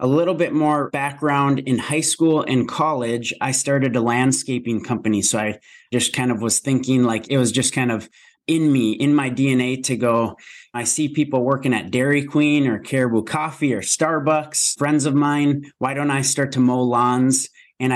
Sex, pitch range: male, 120-145 Hz